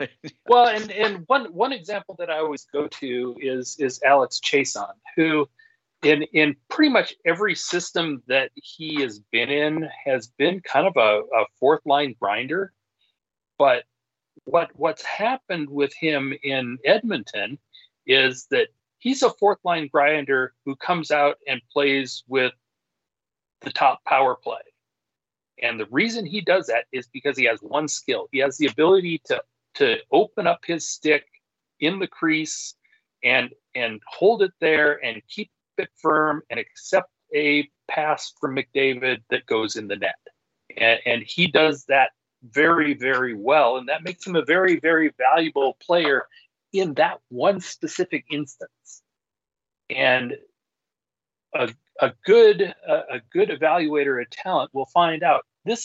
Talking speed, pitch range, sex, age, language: 150 wpm, 135-200 Hz, male, 40-59, English